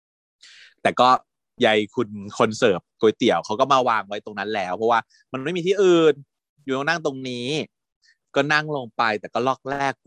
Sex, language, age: male, Thai, 30-49